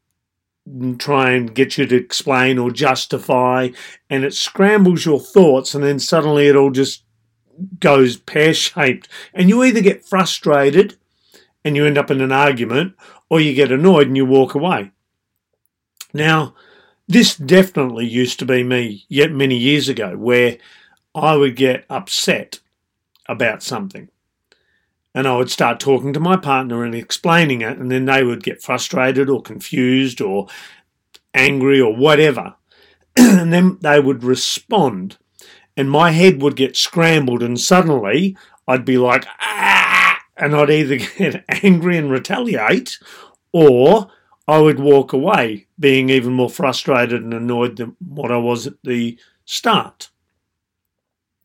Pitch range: 125-155 Hz